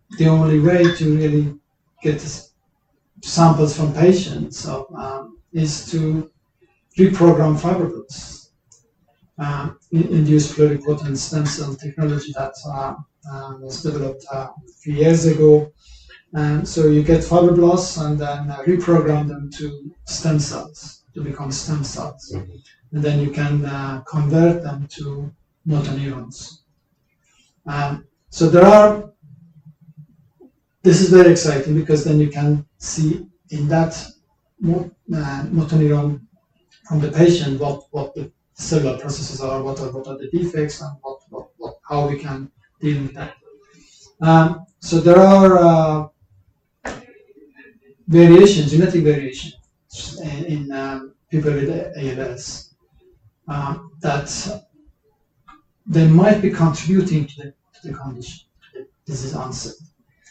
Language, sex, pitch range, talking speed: English, male, 140-165 Hz, 120 wpm